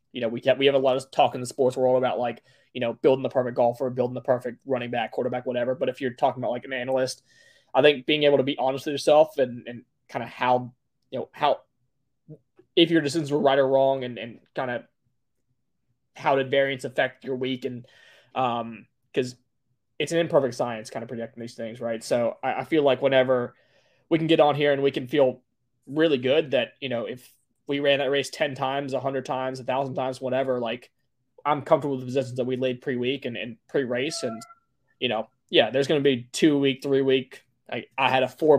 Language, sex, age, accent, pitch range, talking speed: English, male, 20-39, American, 125-140 Hz, 230 wpm